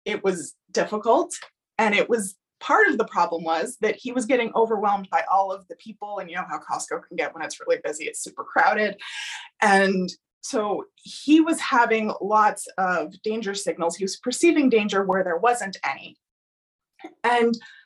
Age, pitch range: 20-39, 210-280 Hz